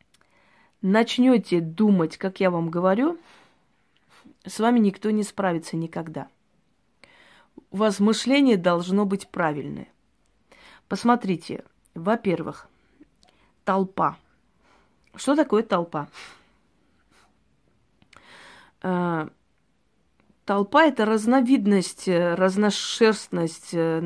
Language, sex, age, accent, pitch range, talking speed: Russian, female, 30-49, native, 180-235 Hz, 70 wpm